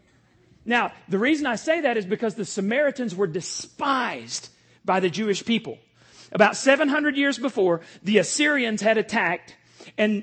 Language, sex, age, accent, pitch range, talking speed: English, male, 40-59, American, 205-260 Hz, 145 wpm